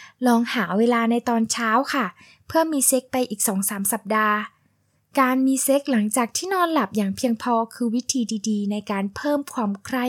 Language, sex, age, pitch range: Thai, female, 10-29, 210-260 Hz